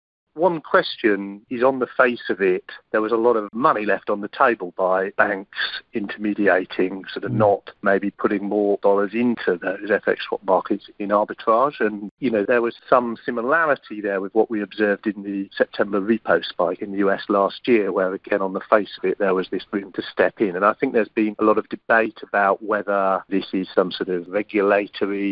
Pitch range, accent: 100-115 Hz, British